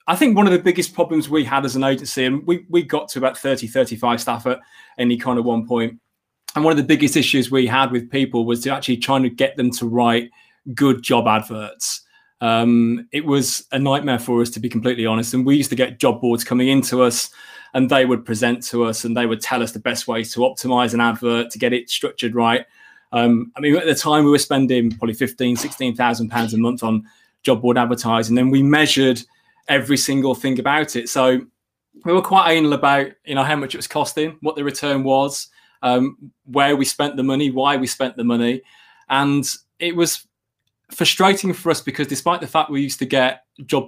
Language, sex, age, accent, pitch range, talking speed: English, male, 20-39, British, 120-140 Hz, 225 wpm